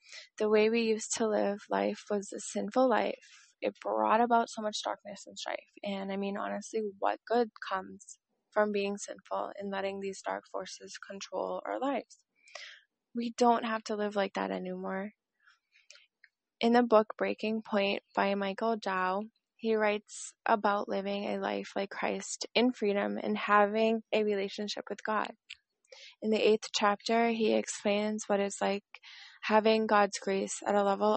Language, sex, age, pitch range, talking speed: English, female, 20-39, 195-225 Hz, 160 wpm